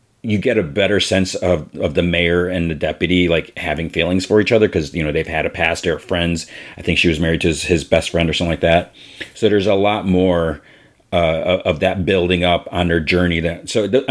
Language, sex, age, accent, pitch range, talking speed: English, male, 40-59, American, 85-105 Hz, 245 wpm